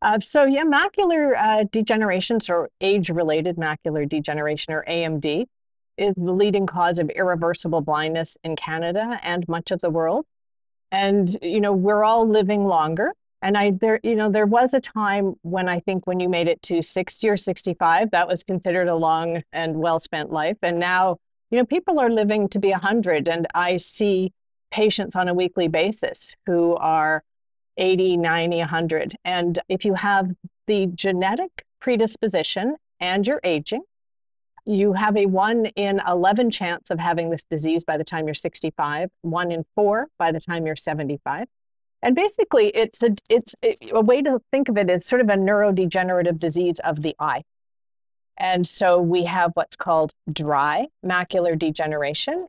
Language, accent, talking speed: English, American, 170 wpm